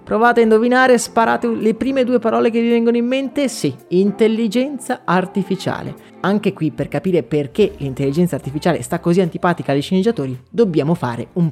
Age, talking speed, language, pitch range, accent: 30-49, 160 wpm, Italian, 145-205 Hz, native